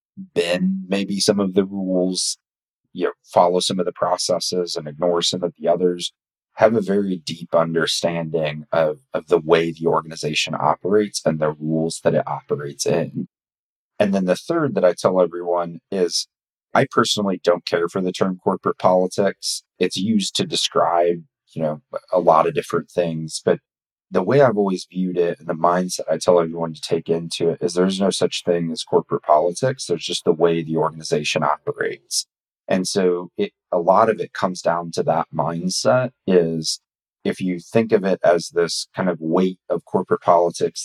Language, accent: English, American